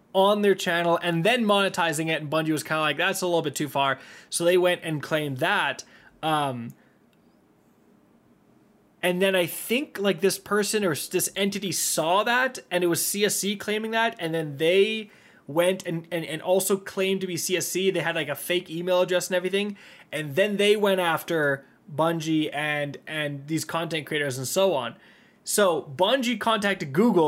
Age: 20-39